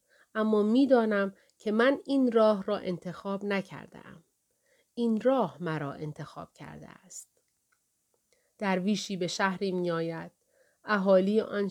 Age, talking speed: 30-49, 110 wpm